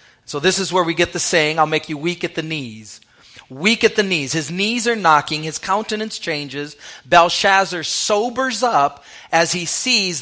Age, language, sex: 40-59, English, male